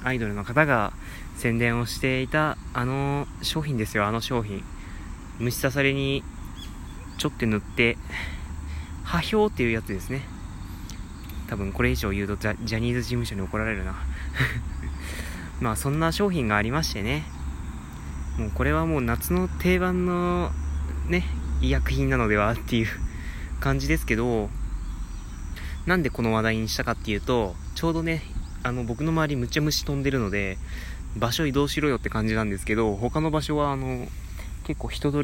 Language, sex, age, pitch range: Japanese, male, 20-39, 90-130 Hz